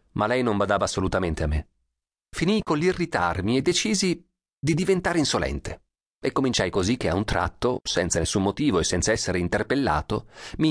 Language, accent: Italian, native